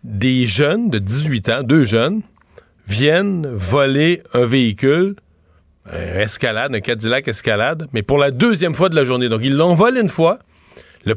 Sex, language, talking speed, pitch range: male, French, 165 wpm, 120-165 Hz